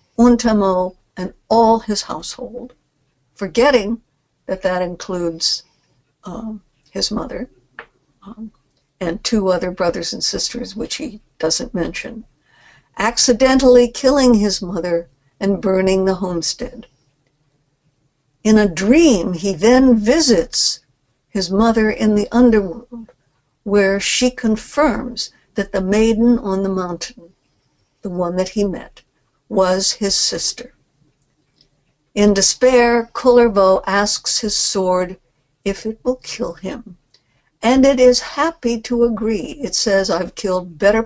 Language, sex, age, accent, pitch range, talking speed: English, female, 60-79, American, 175-230 Hz, 120 wpm